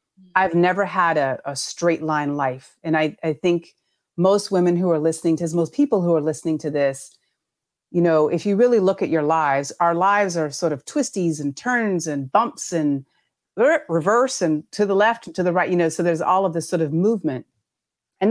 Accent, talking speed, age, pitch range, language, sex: American, 215 wpm, 40-59, 145-185 Hz, English, female